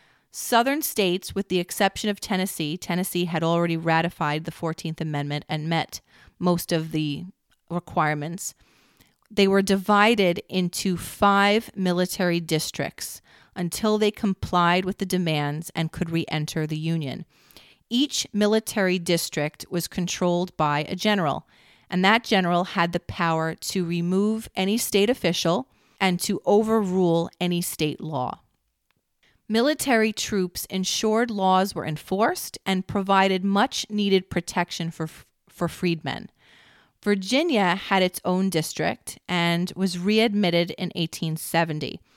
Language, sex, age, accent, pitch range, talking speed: English, female, 30-49, American, 165-200 Hz, 125 wpm